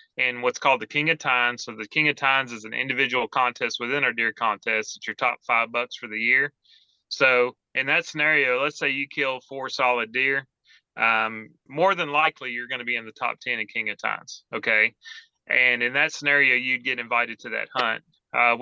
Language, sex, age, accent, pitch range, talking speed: English, male, 30-49, American, 120-145 Hz, 215 wpm